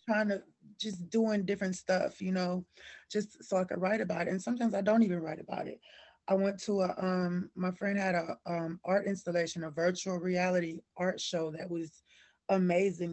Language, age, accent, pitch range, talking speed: English, 20-39, American, 175-195 Hz, 195 wpm